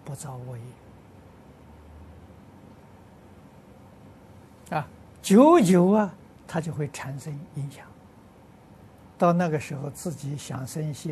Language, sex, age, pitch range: Chinese, male, 60-79, 115-160 Hz